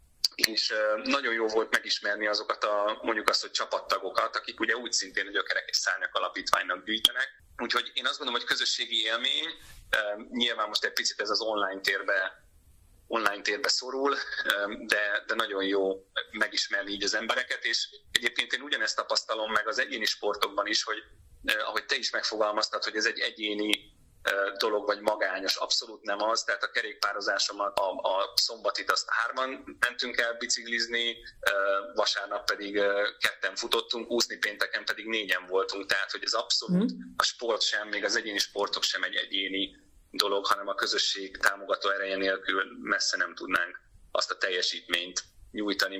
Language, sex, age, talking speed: Hungarian, male, 30-49, 155 wpm